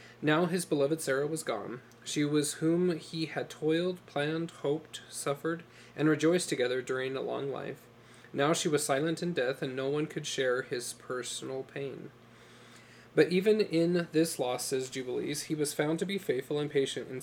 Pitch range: 135-160 Hz